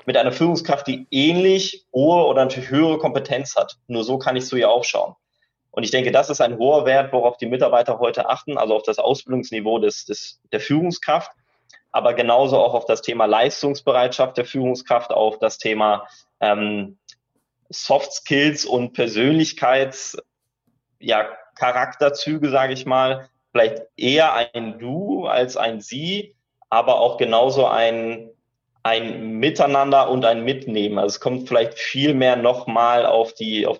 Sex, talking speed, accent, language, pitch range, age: male, 155 wpm, German, German, 120-140 Hz, 20-39